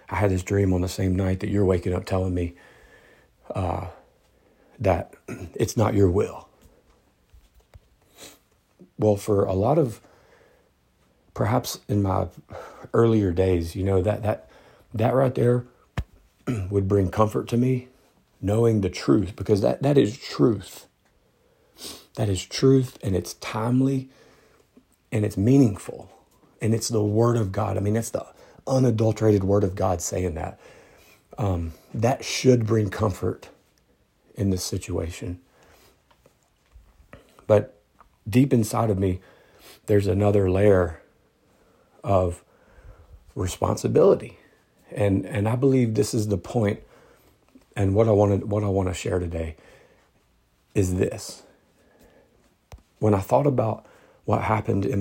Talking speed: 130 wpm